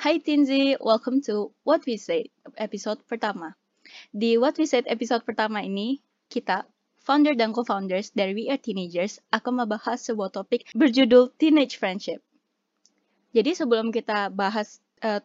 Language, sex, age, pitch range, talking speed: Indonesian, female, 20-39, 210-260 Hz, 140 wpm